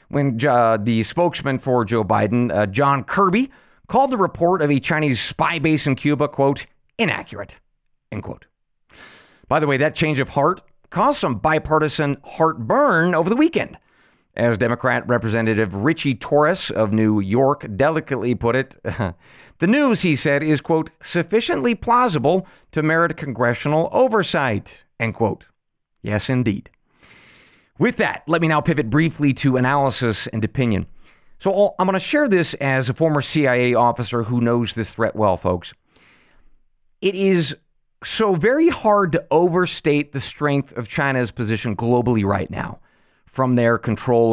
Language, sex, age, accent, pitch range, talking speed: English, male, 40-59, American, 120-165 Hz, 150 wpm